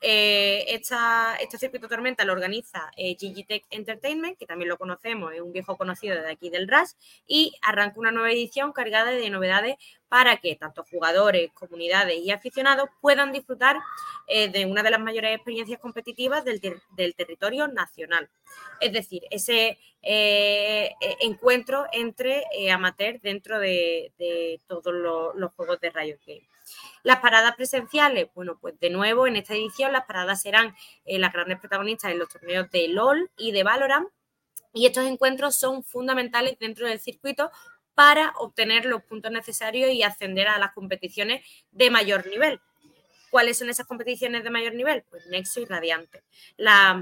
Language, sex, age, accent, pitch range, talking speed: Spanish, female, 20-39, Spanish, 195-255 Hz, 165 wpm